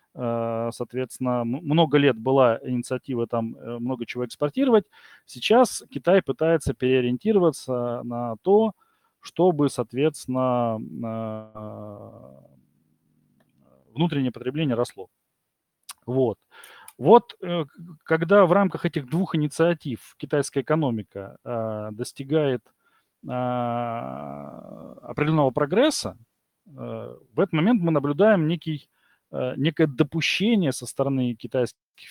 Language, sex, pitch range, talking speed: Russian, male, 120-165 Hz, 80 wpm